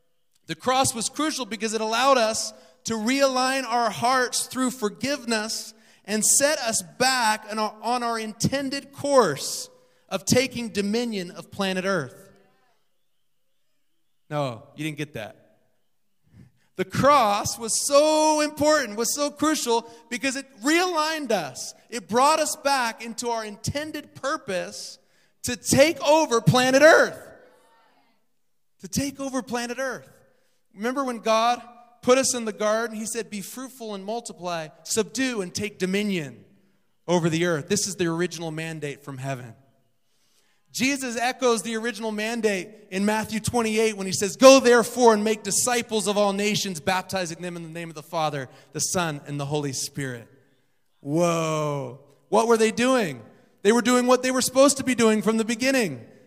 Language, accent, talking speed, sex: English, American, 150 wpm, male